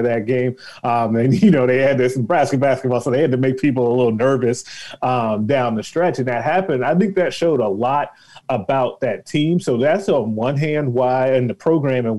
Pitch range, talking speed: 125-160 Hz, 225 wpm